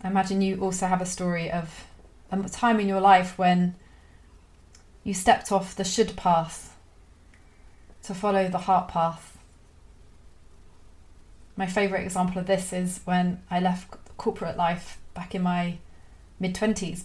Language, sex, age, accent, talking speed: English, female, 30-49, British, 140 wpm